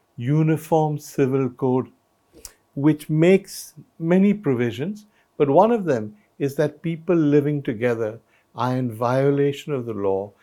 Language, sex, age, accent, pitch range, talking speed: English, male, 60-79, Indian, 115-150 Hz, 125 wpm